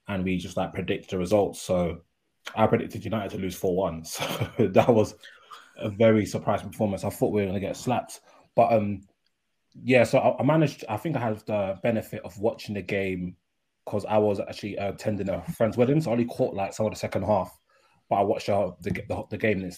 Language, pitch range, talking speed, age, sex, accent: English, 95-110 Hz, 225 wpm, 20-39, male, British